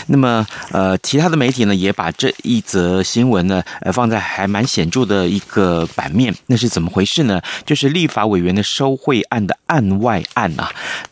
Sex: male